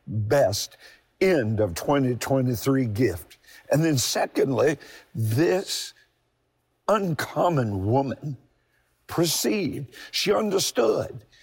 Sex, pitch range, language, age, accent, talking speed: male, 120-145 Hz, English, 50-69, American, 75 wpm